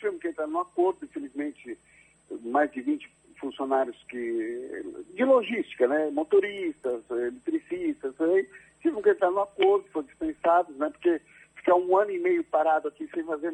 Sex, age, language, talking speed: male, 60-79, Portuguese, 150 wpm